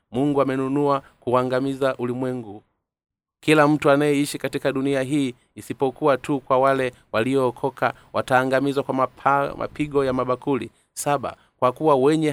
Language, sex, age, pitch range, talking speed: Swahili, male, 30-49, 120-140 Hz, 115 wpm